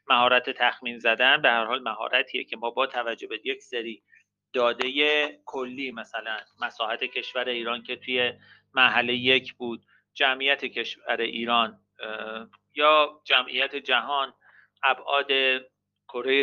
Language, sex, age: Persian, male, 40-59